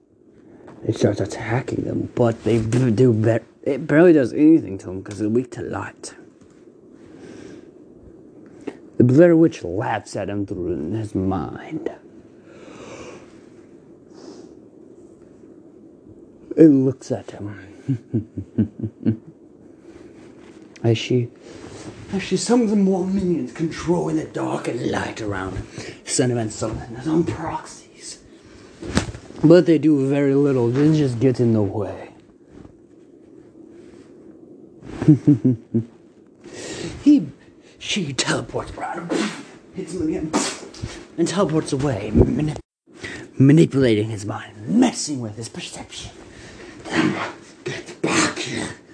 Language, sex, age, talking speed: English, male, 30-49, 100 wpm